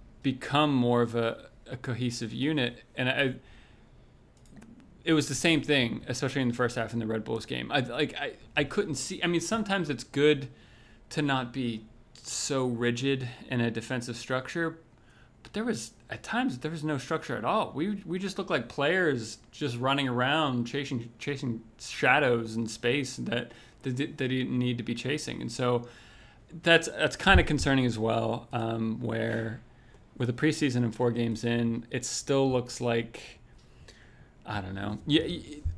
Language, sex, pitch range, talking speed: English, male, 115-140 Hz, 170 wpm